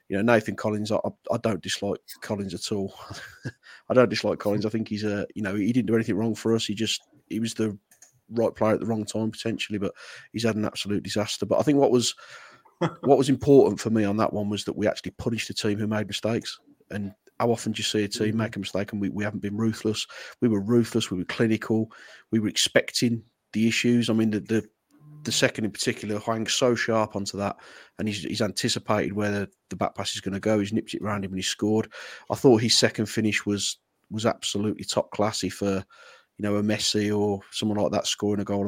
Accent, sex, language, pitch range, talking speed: British, male, English, 105-115 Hz, 235 wpm